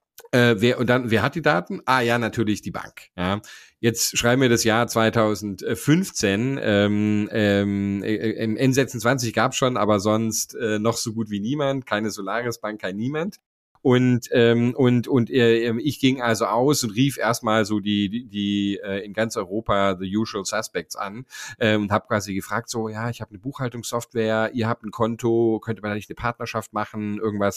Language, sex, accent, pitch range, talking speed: German, male, German, 105-125 Hz, 185 wpm